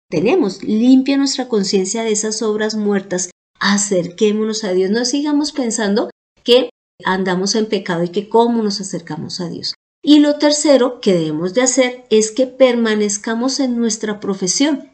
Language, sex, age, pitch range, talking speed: Spanish, female, 40-59, 180-235 Hz, 155 wpm